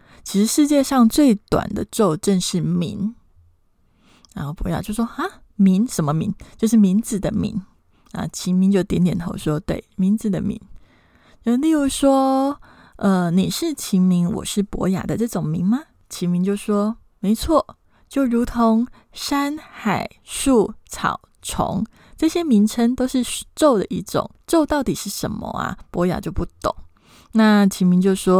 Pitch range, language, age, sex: 185-240 Hz, Chinese, 20-39, female